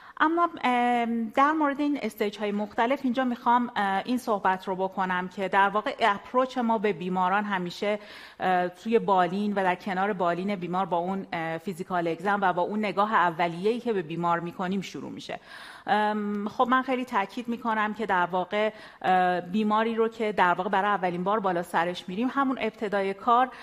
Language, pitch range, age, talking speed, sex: Persian, 180-220 Hz, 30-49, 170 wpm, female